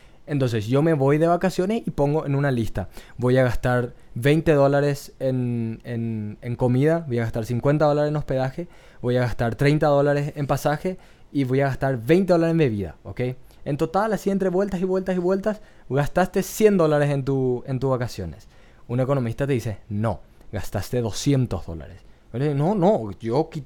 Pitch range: 115-155 Hz